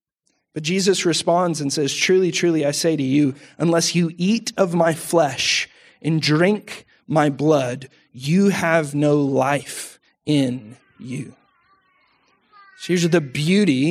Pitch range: 155-225 Hz